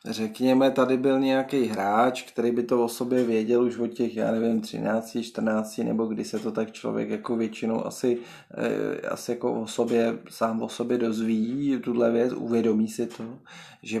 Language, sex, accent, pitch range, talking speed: Czech, male, native, 115-135 Hz, 180 wpm